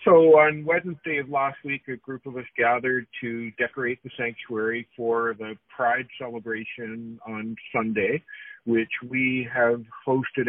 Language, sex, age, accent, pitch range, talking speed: English, male, 50-69, American, 115-135 Hz, 145 wpm